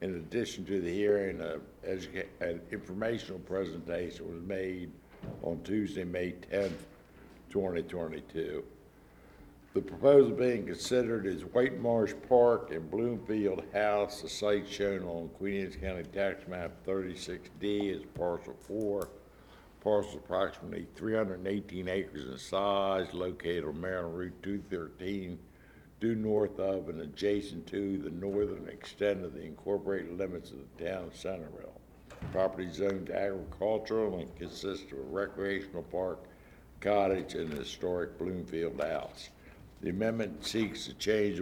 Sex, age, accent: male, 60-79, American